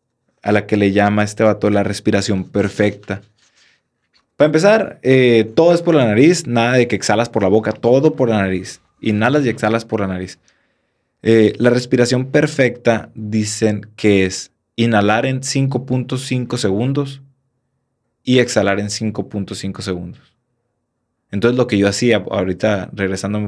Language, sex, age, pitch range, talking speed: Spanish, male, 20-39, 105-125 Hz, 150 wpm